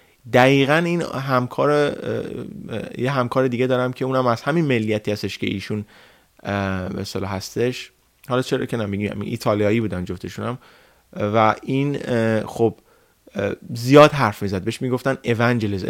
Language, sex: Persian, male